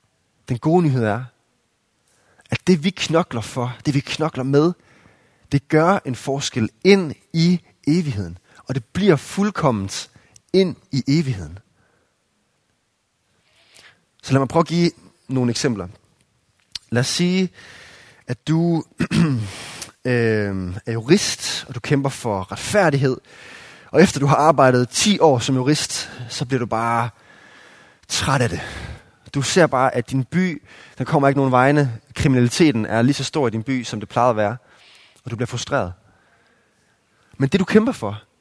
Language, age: Danish, 30-49